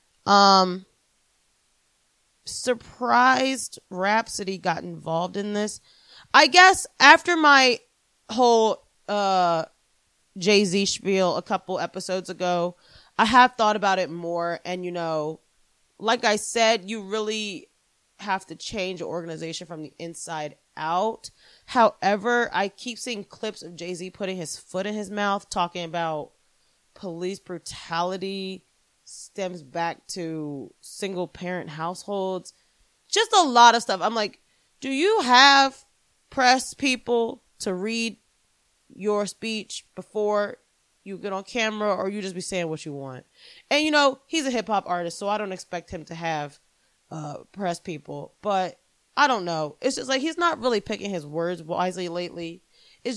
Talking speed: 145 wpm